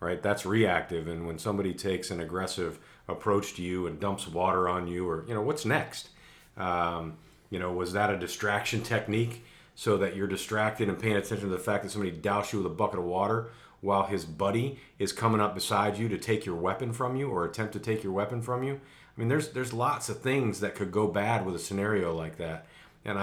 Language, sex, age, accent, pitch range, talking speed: English, male, 40-59, American, 90-110 Hz, 225 wpm